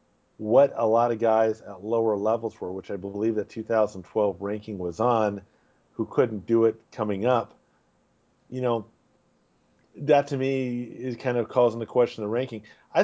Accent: American